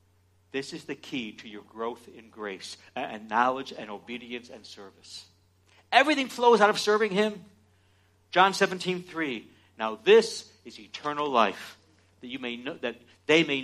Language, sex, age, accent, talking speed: English, male, 60-79, American, 145 wpm